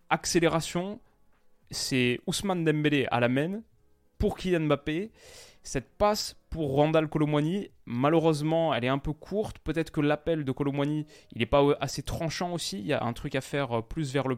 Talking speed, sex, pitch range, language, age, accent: 175 wpm, male, 120-150 Hz, French, 20-39, French